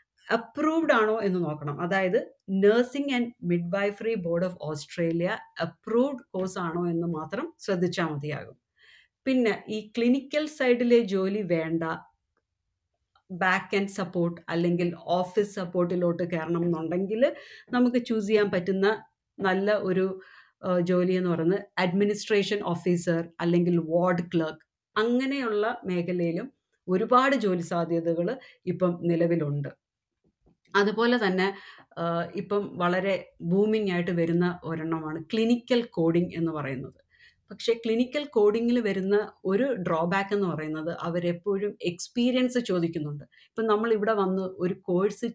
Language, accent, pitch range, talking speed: Malayalam, native, 170-225 Hz, 105 wpm